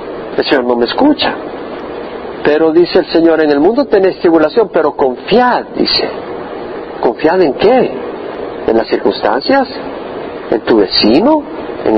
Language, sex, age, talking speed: Spanish, male, 50-69, 135 wpm